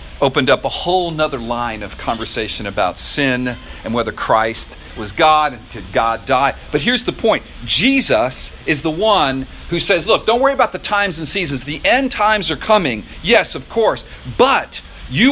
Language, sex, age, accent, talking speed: English, male, 40-59, American, 185 wpm